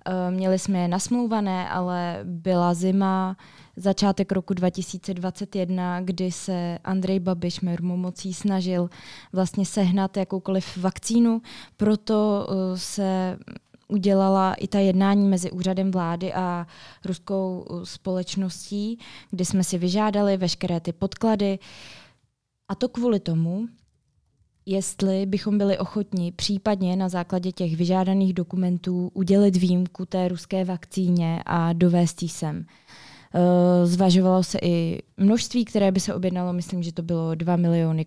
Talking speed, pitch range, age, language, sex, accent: 120 wpm, 180-195 Hz, 20-39, Czech, female, native